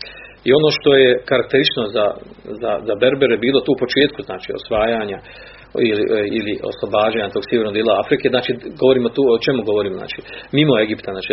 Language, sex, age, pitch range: Croatian, male, 40-59, 110-140 Hz